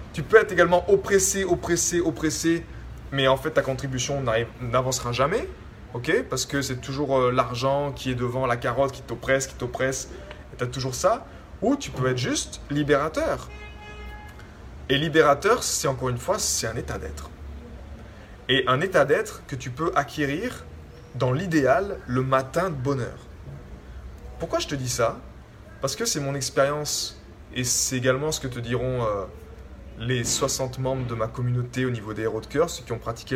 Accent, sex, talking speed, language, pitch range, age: French, male, 175 wpm, French, 105-140 Hz, 20-39